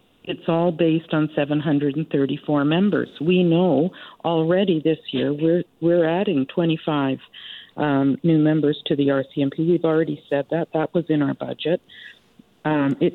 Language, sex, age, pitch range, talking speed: English, female, 50-69, 150-190 Hz, 145 wpm